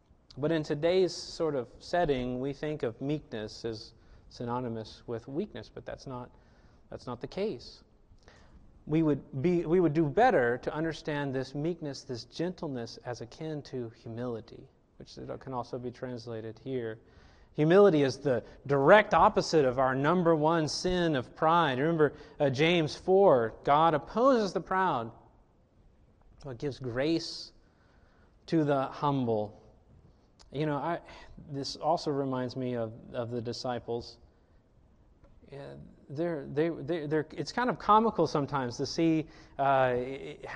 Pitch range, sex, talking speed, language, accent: 125-170 Hz, male, 140 wpm, English, American